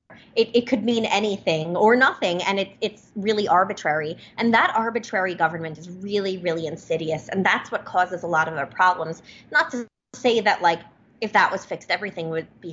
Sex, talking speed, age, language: female, 195 wpm, 20-39, English